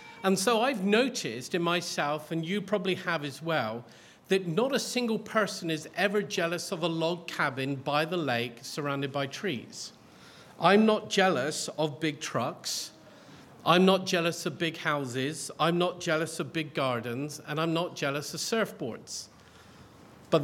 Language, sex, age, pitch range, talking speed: English, male, 50-69, 150-195 Hz, 160 wpm